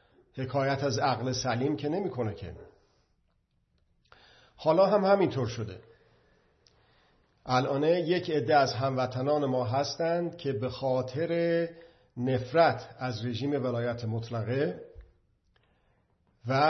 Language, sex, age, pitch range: Persian, male, 50-69, 120-140 Hz